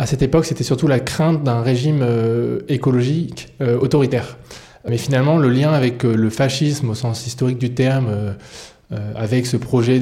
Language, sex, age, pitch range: French, male, 20-39, 115-135 Hz